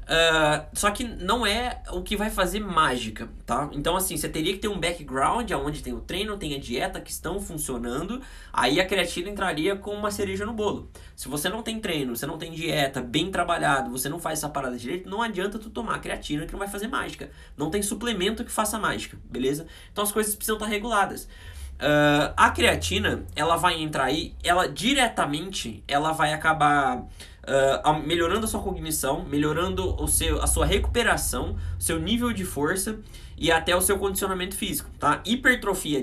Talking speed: 190 wpm